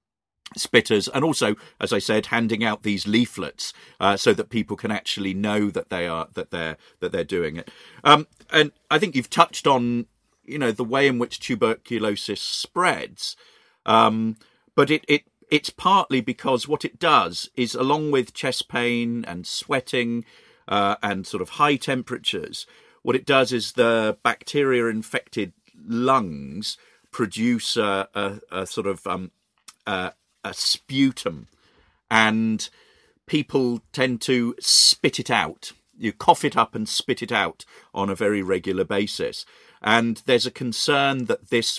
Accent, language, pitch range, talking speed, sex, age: British, English, 105-135 Hz, 155 wpm, male, 50-69